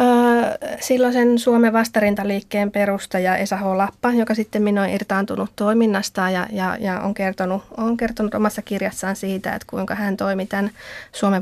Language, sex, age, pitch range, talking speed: Finnish, female, 30-49, 190-215 Hz, 150 wpm